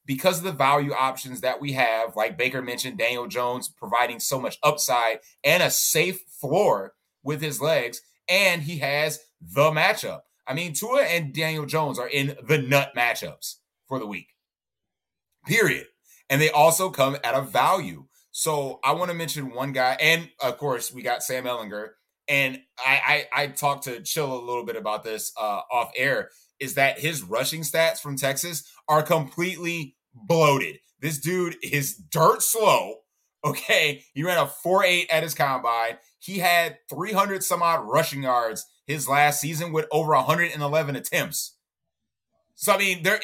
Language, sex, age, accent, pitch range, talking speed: English, male, 30-49, American, 135-170 Hz, 170 wpm